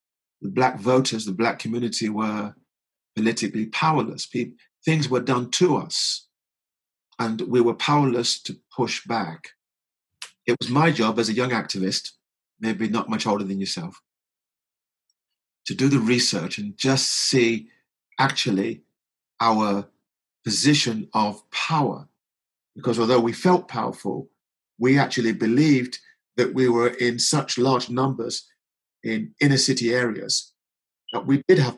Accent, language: British, English